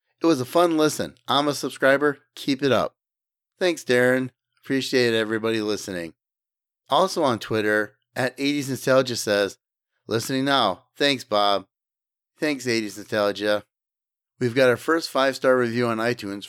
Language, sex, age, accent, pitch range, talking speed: English, male, 30-49, American, 110-140 Hz, 140 wpm